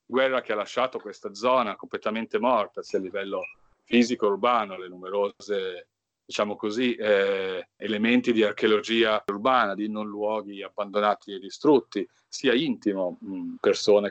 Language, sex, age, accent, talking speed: Italian, male, 40-59, native, 130 wpm